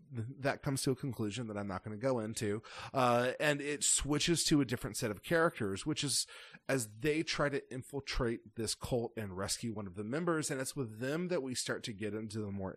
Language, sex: English, male